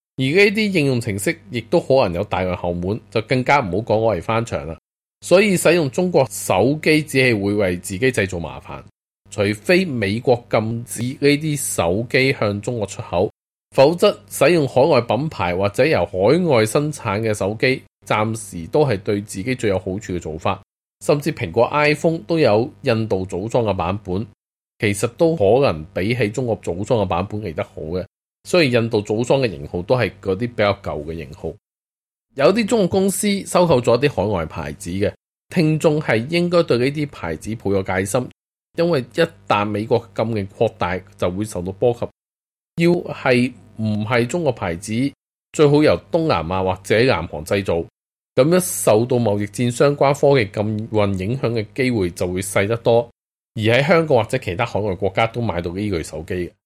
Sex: male